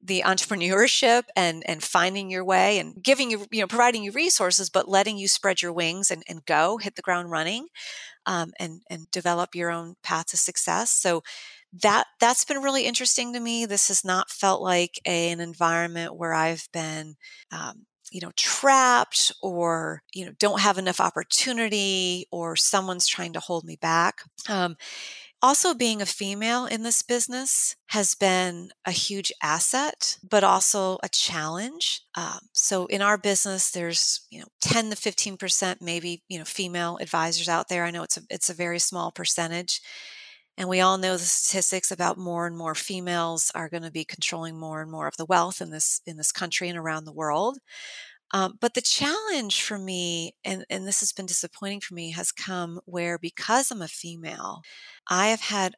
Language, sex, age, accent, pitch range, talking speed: English, female, 30-49, American, 170-210 Hz, 185 wpm